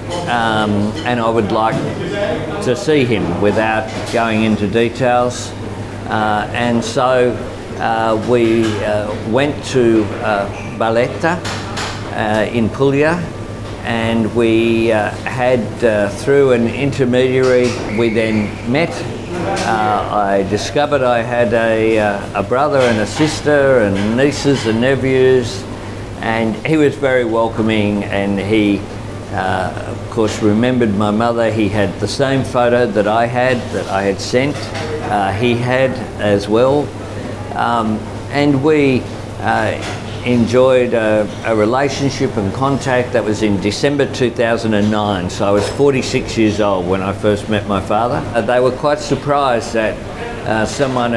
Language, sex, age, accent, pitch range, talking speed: Malayalam, male, 50-69, Australian, 105-125 Hz, 140 wpm